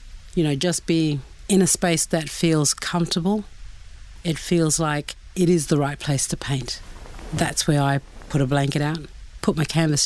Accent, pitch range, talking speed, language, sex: Australian, 140-170 Hz, 180 wpm, English, female